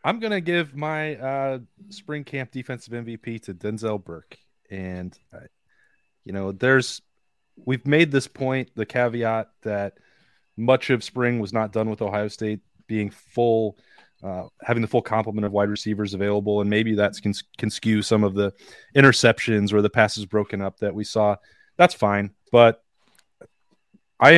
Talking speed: 165 wpm